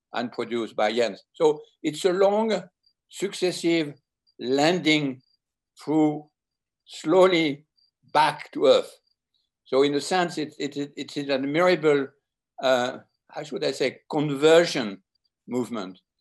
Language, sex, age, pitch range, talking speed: German, male, 60-79, 125-160 Hz, 120 wpm